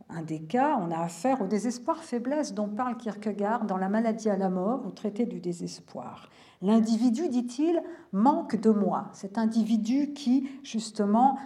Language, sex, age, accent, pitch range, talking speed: French, female, 50-69, French, 195-240 Hz, 155 wpm